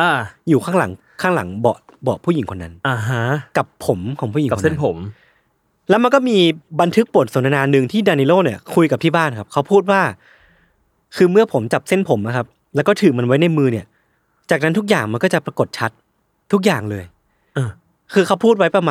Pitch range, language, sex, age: 130-190 Hz, Thai, male, 20-39